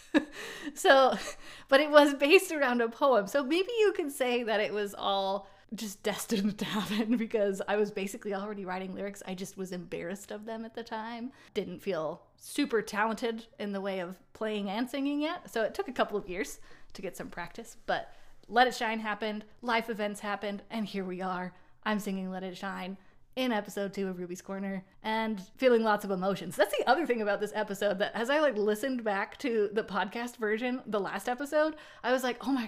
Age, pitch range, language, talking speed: 20-39, 200-275 Hz, English, 205 wpm